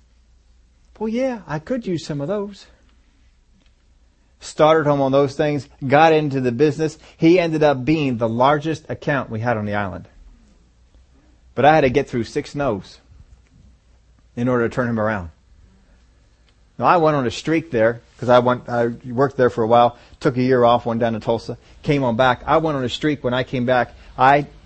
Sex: male